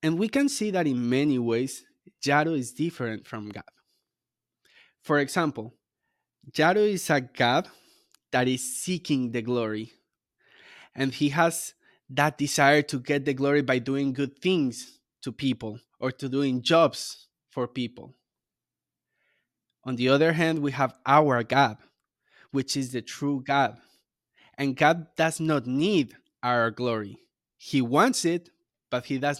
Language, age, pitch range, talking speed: English, 20-39, 125-155 Hz, 145 wpm